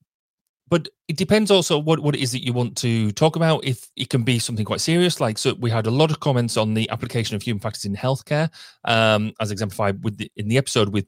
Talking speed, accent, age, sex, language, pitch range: 250 wpm, British, 30-49, male, English, 105-140 Hz